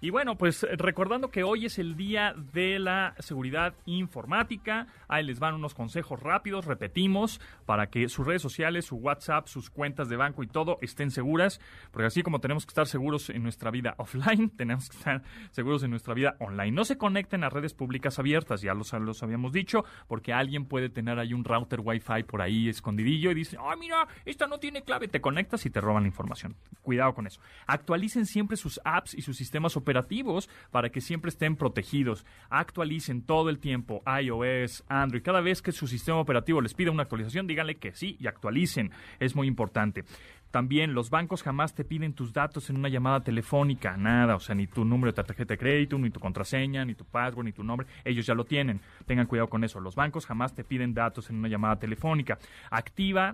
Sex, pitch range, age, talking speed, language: male, 115-160 Hz, 30-49, 205 wpm, Spanish